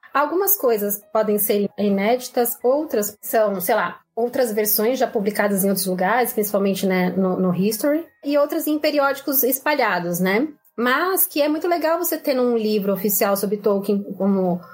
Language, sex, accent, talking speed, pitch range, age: Portuguese, female, Brazilian, 165 wpm, 210-280 Hz, 20-39